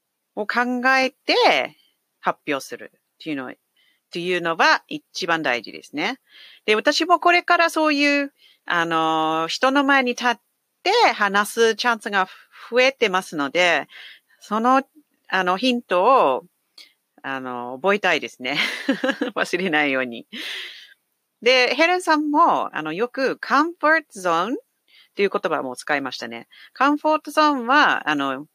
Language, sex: English, female